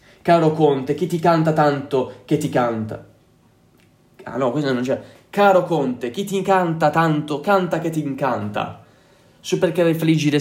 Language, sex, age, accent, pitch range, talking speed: Italian, male, 20-39, native, 130-170 Hz, 155 wpm